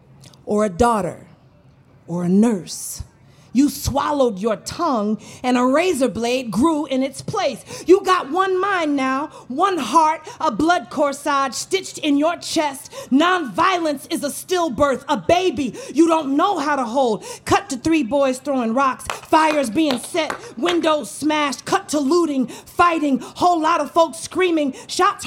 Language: English